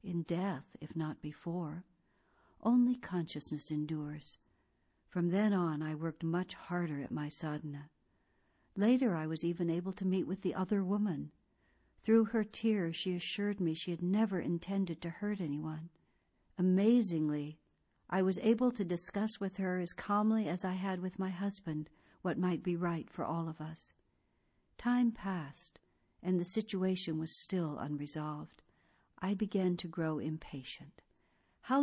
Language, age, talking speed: English, 60-79, 150 wpm